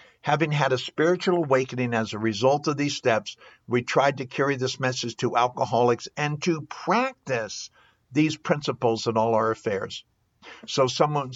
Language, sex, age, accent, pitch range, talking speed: English, male, 60-79, American, 115-155 Hz, 160 wpm